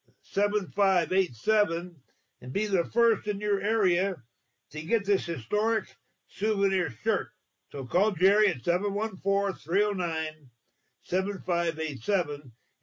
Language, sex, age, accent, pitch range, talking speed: English, male, 60-79, American, 170-210 Hz, 90 wpm